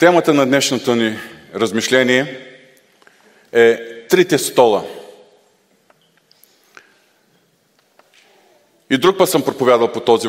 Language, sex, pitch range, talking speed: Bulgarian, male, 115-150 Hz, 85 wpm